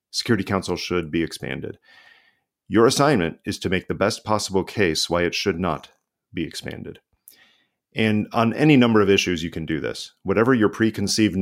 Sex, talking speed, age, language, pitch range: male, 175 wpm, 40-59, English, 90-110 Hz